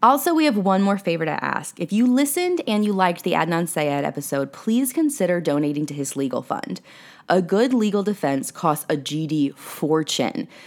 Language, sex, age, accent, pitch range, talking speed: English, female, 20-39, American, 145-200 Hz, 185 wpm